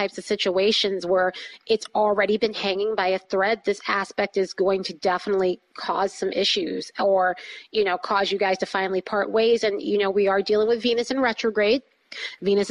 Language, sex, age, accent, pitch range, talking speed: English, female, 30-49, American, 200-245 Hz, 195 wpm